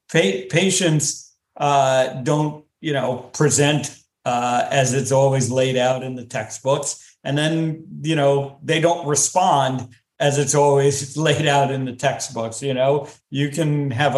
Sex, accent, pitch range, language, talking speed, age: male, American, 125-145 Hz, English, 150 wpm, 50-69